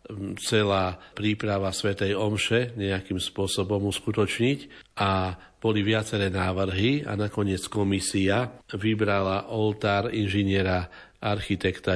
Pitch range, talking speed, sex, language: 95-105 Hz, 90 wpm, male, Slovak